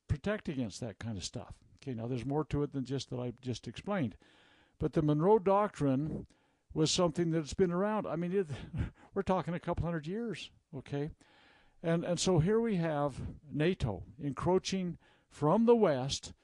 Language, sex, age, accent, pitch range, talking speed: English, male, 60-79, American, 130-180 Hz, 170 wpm